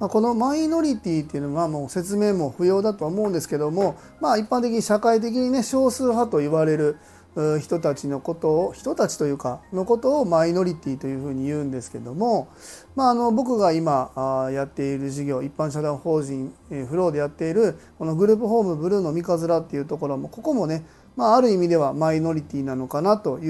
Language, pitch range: Japanese, 145-210 Hz